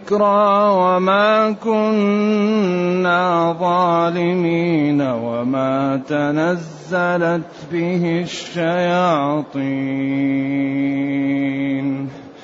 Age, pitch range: 30-49, 150-185 Hz